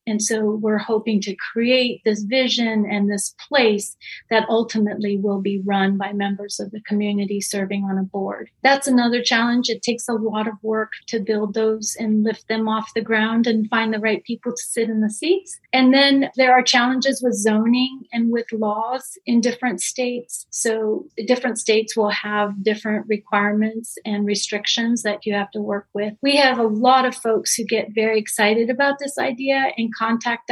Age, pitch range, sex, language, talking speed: 30-49, 210-245 Hz, female, English, 190 wpm